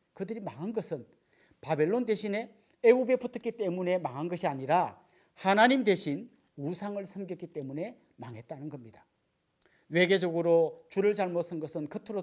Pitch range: 150-200 Hz